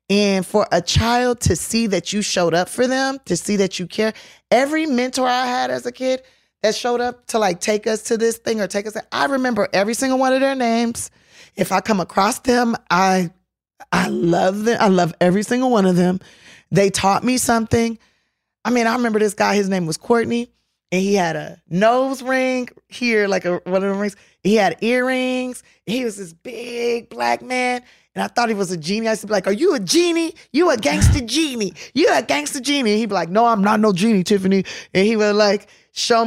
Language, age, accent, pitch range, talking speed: English, 20-39, American, 190-240 Hz, 225 wpm